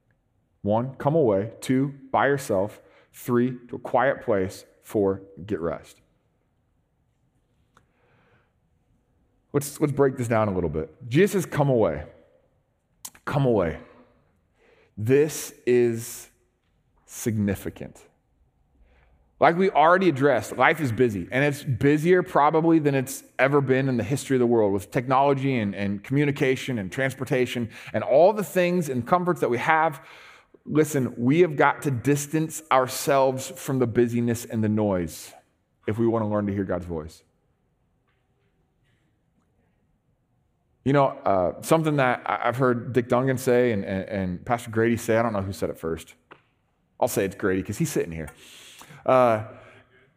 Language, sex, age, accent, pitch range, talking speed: English, male, 30-49, American, 110-145 Hz, 145 wpm